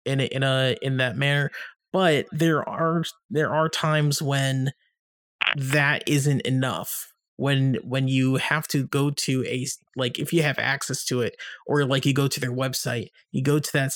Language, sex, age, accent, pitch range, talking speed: English, male, 30-49, American, 125-155 Hz, 185 wpm